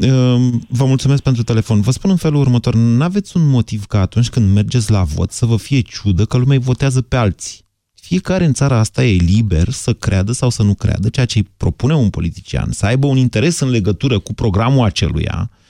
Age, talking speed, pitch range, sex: 30-49, 215 wpm, 105-145 Hz, male